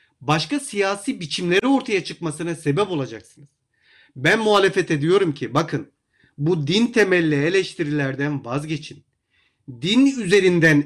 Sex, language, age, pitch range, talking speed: male, Turkish, 40-59, 150-220 Hz, 105 wpm